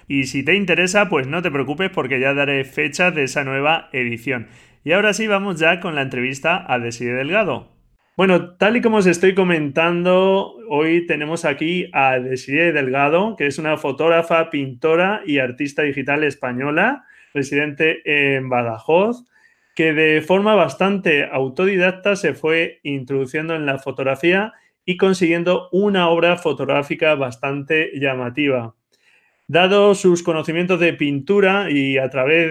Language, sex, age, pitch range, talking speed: Spanish, male, 30-49, 140-180 Hz, 145 wpm